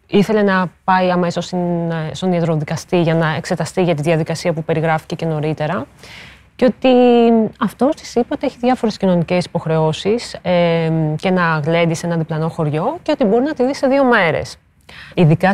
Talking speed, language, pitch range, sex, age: 165 wpm, Greek, 160-225 Hz, female, 30-49